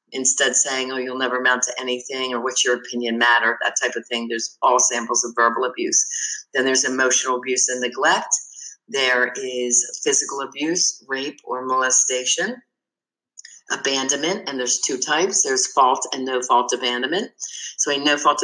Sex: female